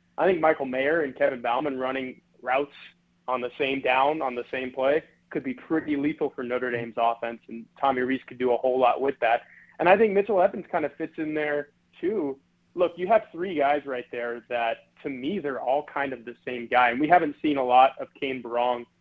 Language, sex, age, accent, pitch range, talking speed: English, male, 20-39, American, 125-150 Hz, 225 wpm